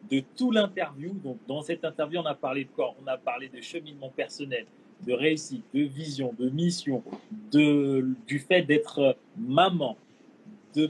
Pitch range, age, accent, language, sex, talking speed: 130-180 Hz, 30-49, French, French, male, 165 wpm